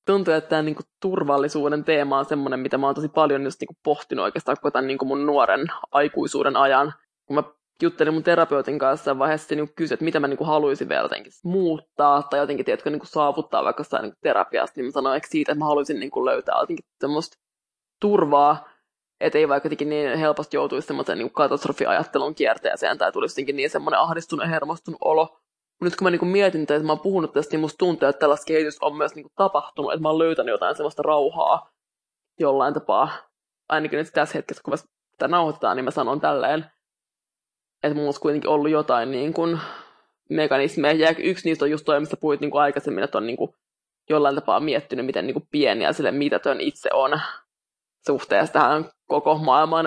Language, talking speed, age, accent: English, 175 wpm, 20-39, Finnish